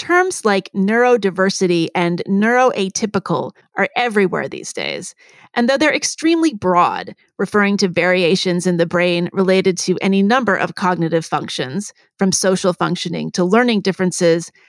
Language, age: English, 30-49